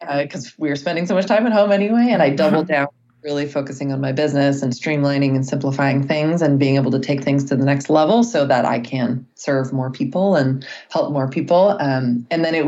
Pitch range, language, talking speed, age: 140-165 Hz, English, 235 wpm, 20-39